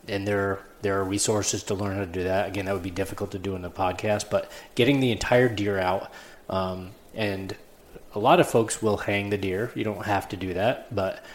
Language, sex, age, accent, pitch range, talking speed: English, male, 20-39, American, 100-115 Hz, 235 wpm